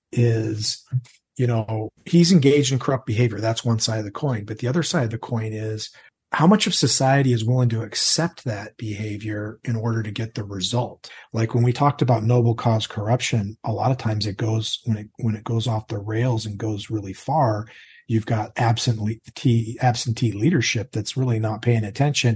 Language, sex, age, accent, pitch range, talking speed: English, male, 40-59, American, 110-125 Hz, 200 wpm